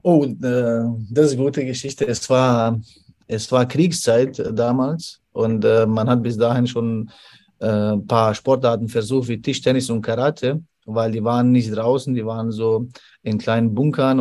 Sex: male